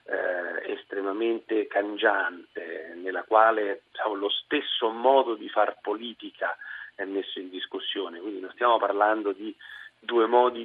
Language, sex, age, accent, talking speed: Italian, male, 40-59, native, 125 wpm